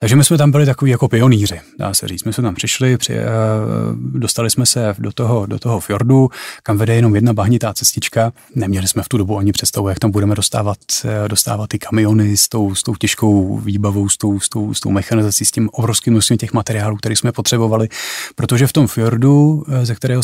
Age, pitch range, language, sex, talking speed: 30-49, 105-120 Hz, Czech, male, 215 wpm